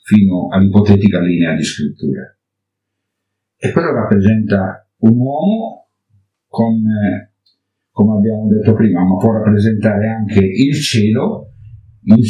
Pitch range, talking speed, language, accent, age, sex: 95-110 Hz, 105 wpm, Italian, native, 50-69, male